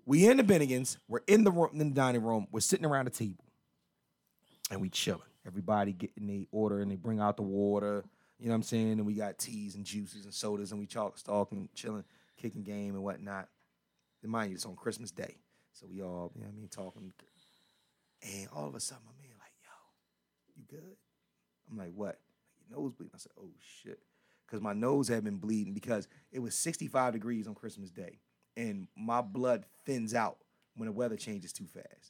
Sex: male